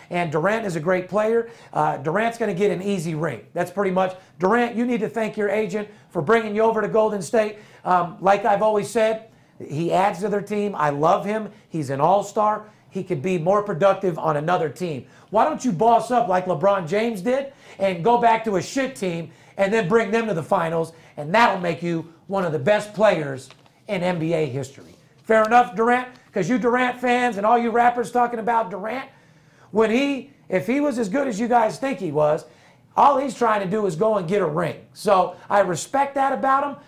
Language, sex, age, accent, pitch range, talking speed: English, male, 40-59, American, 180-230 Hz, 220 wpm